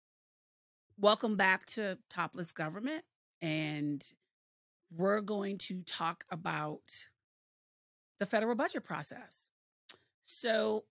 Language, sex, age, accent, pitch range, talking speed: English, female, 40-59, American, 165-220 Hz, 90 wpm